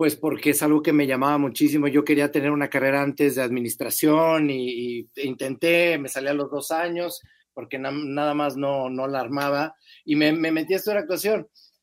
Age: 40-59